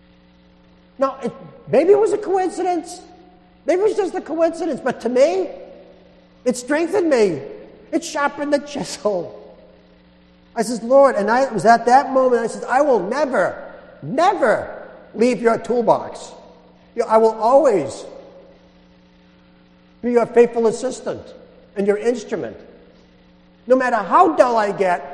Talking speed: 135 wpm